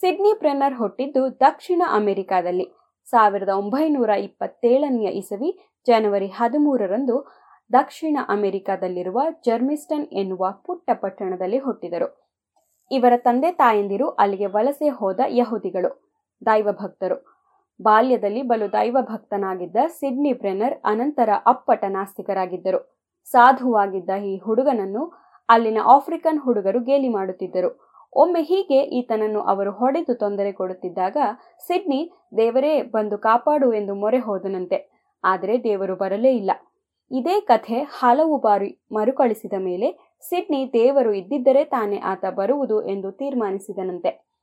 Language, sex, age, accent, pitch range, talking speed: Kannada, female, 20-39, native, 200-275 Hz, 95 wpm